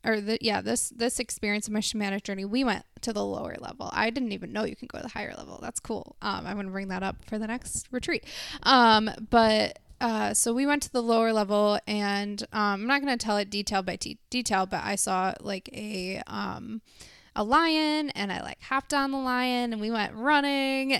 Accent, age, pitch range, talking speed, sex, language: American, 20-39, 210-255 Hz, 225 wpm, female, English